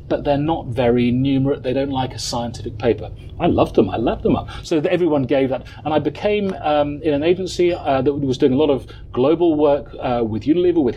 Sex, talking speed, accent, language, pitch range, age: male, 230 wpm, British, English, 120-150 Hz, 40-59